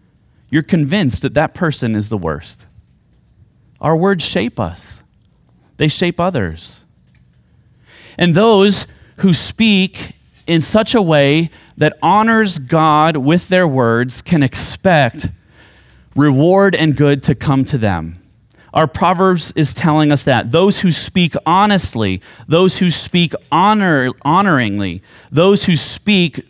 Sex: male